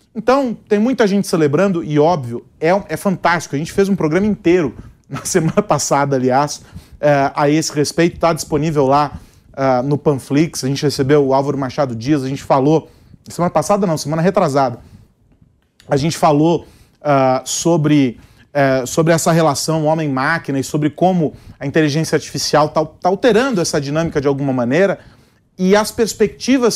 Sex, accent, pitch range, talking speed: male, Brazilian, 140-175 Hz, 150 wpm